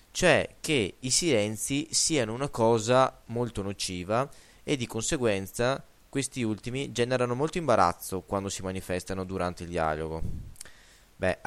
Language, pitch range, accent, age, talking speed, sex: Italian, 95-140 Hz, native, 20-39, 125 wpm, male